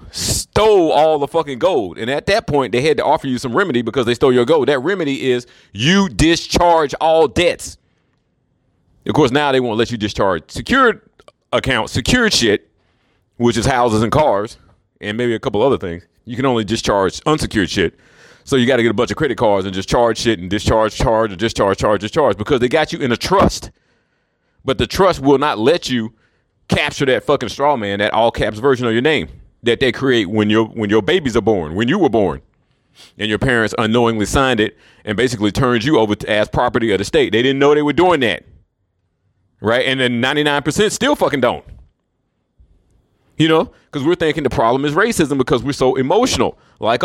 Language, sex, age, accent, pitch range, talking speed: English, male, 40-59, American, 110-160 Hz, 205 wpm